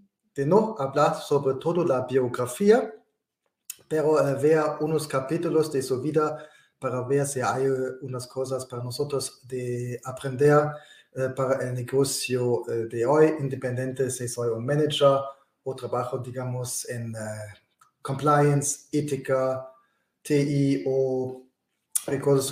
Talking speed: 115 wpm